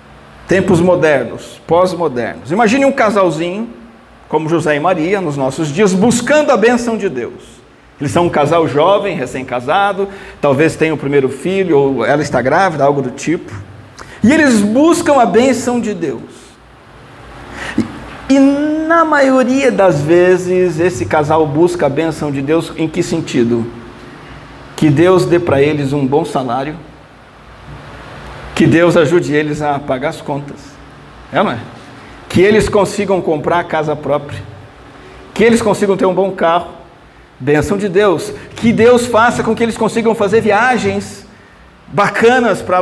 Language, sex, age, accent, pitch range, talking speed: Portuguese, male, 50-69, Brazilian, 150-210 Hz, 150 wpm